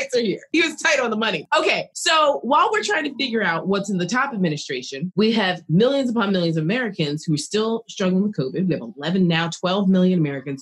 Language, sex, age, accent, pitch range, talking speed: English, female, 20-39, American, 150-205 Hz, 230 wpm